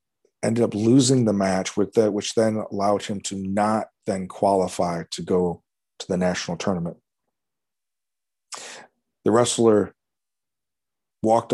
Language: English